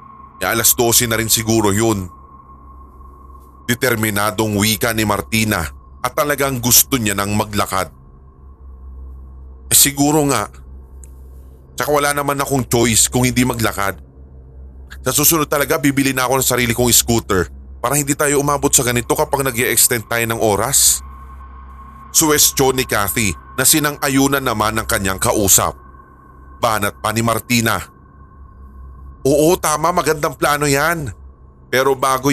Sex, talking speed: male, 130 wpm